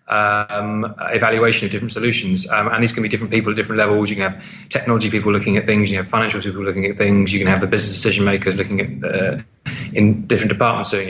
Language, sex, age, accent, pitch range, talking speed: English, male, 30-49, British, 110-125 Hz, 230 wpm